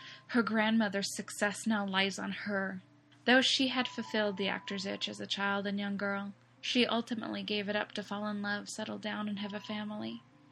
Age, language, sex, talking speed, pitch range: 10-29, English, female, 200 wpm, 195-220 Hz